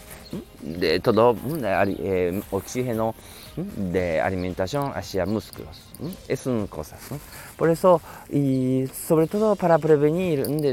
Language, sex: Japanese, male